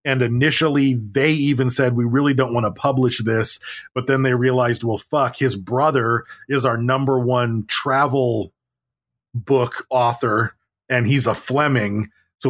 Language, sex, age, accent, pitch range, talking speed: English, male, 30-49, American, 120-140 Hz, 155 wpm